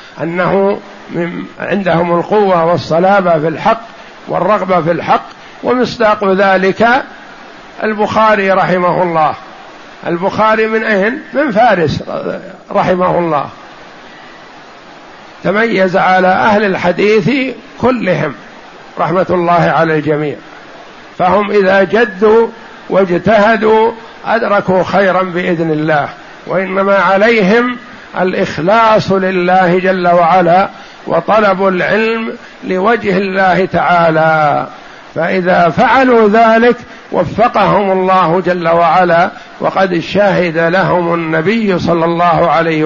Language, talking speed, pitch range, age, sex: Arabic, 90 wpm, 170-210 Hz, 60-79, male